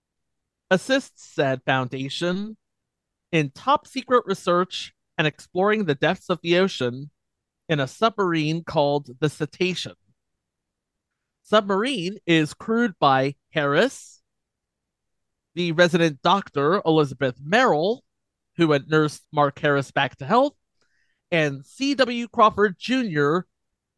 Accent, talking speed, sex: American, 105 wpm, male